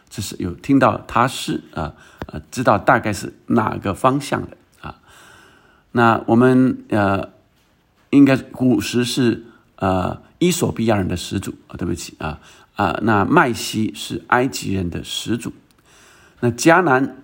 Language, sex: Chinese, male